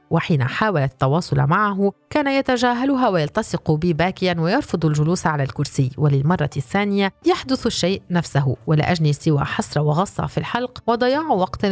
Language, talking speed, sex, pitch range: Arabic, 140 wpm, female, 145-185 Hz